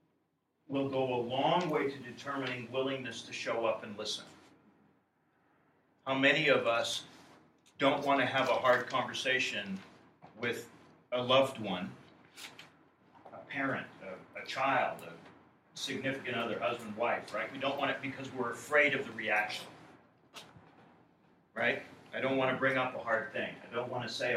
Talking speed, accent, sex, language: 160 wpm, American, male, English